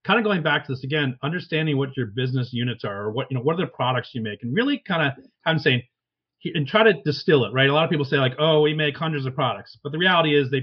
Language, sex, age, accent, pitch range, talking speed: English, male, 40-59, American, 130-155 Hz, 295 wpm